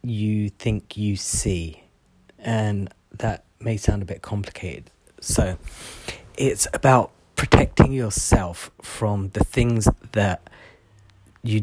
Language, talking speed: English, 110 wpm